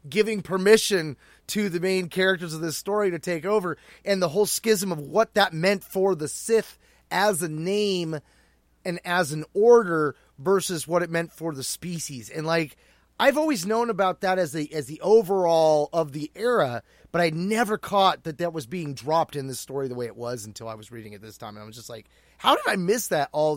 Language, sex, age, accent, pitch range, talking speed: English, male, 30-49, American, 155-210 Hz, 220 wpm